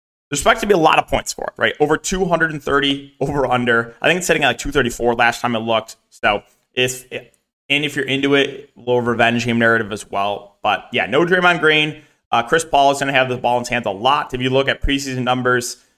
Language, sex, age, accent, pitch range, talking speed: English, male, 20-39, American, 110-140 Hz, 245 wpm